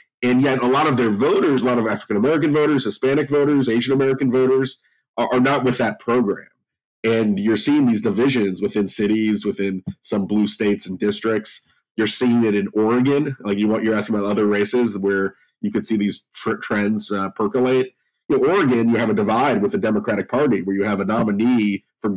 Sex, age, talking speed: male, 30-49, 195 wpm